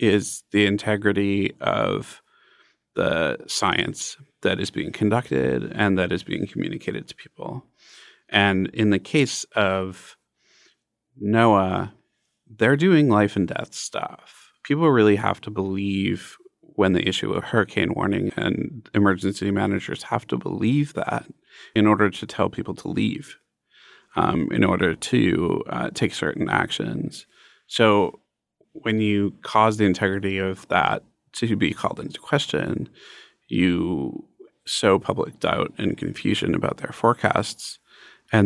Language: English